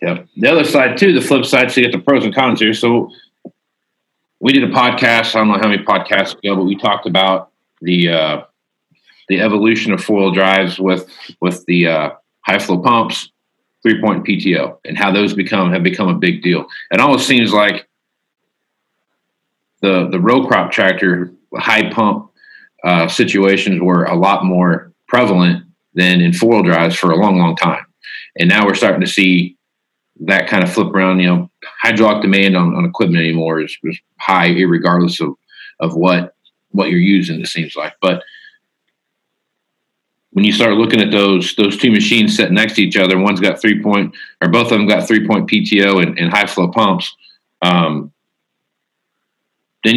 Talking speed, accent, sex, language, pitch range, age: 180 wpm, American, male, English, 90-105 Hz, 40-59